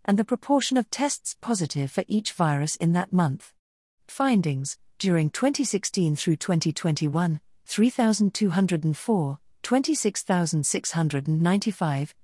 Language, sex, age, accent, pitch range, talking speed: English, female, 50-69, British, 160-215 Hz, 95 wpm